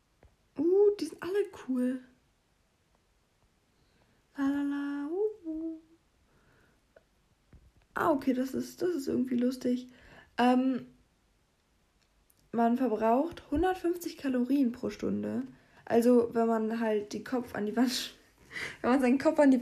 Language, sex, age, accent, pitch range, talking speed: German, female, 20-39, German, 190-270 Hz, 115 wpm